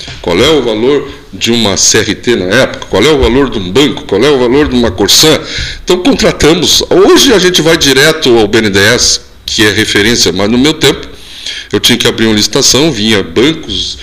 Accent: Brazilian